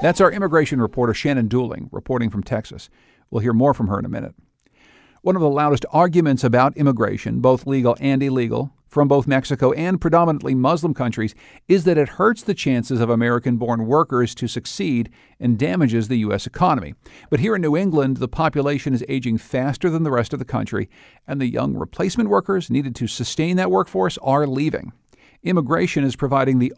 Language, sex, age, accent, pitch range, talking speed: English, male, 50-69, American, 120-150 Hz, 185 wpm